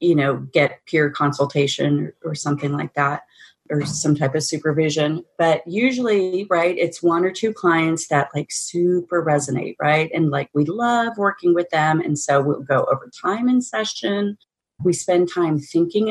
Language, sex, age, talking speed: English, female, 30-49, 175 wpm